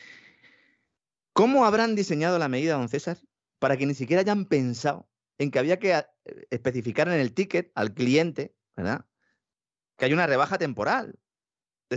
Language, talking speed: Spanish, 150 wpm